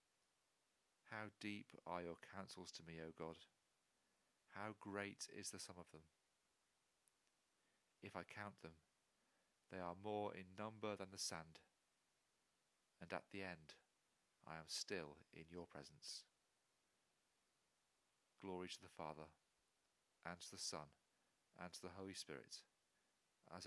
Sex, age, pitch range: male, 40-59, 80-100 Hz